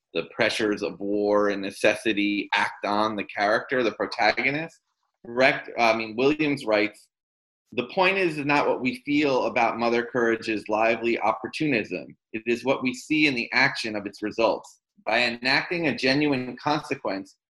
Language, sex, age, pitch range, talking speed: English, male, 30-49, 110-145 Hz, 155 wpm